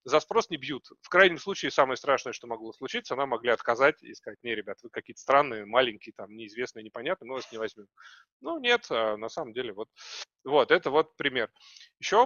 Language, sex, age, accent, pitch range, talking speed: Russian, male, 30-49, native, 115-190 Hz, 200 wpm